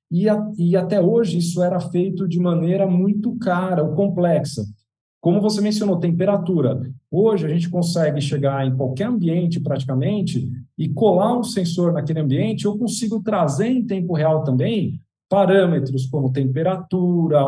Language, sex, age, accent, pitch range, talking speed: English, male, 50-69, Brazilian, 145-190 Hz, 150 wpm